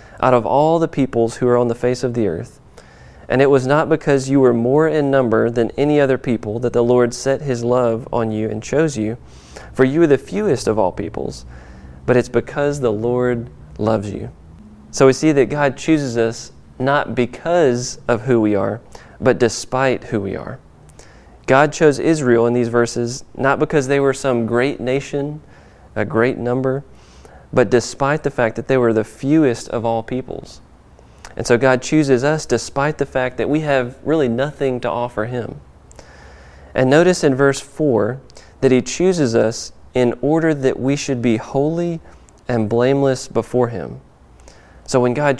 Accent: American